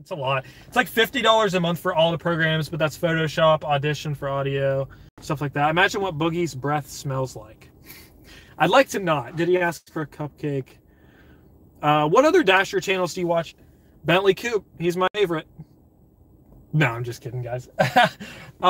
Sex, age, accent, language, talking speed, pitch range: male, 20-39, American, English, 175 wpm, 145-195 Hz